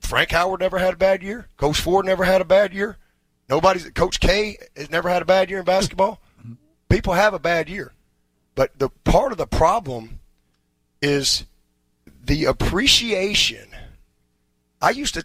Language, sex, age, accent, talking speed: English, male, 30-49, American, 165 wpm